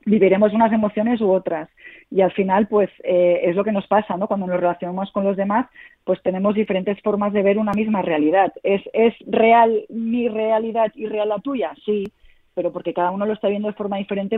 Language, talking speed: Spanish, 210 wpm